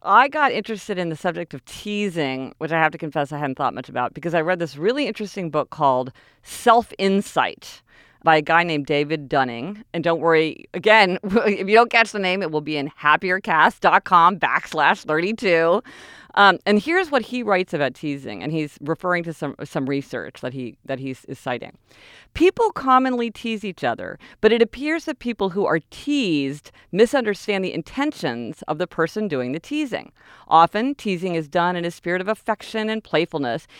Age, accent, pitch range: 40-59, American, 150-220 Hz